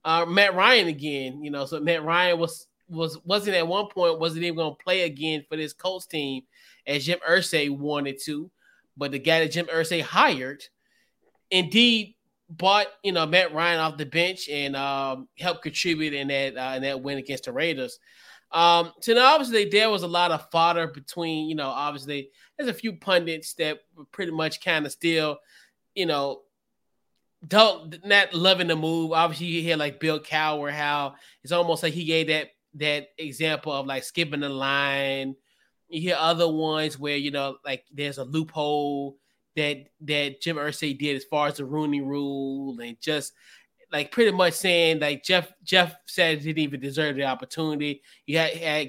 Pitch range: 145-170 Hz